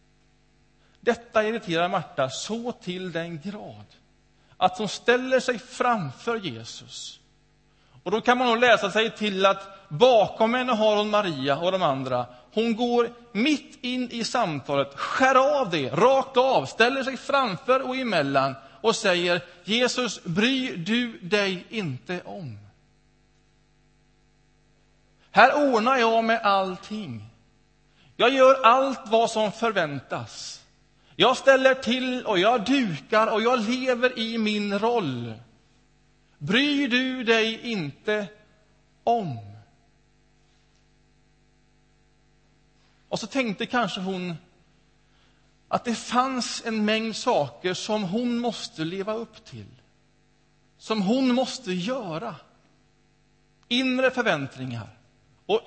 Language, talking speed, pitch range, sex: Swedish, 115 wpm, 150-240 Hz, male